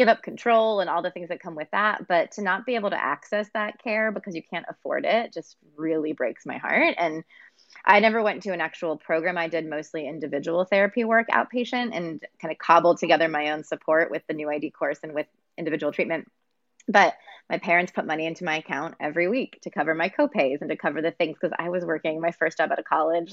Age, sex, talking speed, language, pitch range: 20-39, female, 235 wpm, English, 155-195 Hz